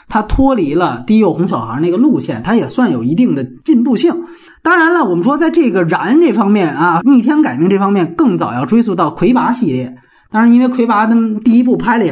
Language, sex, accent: Chinese, male, native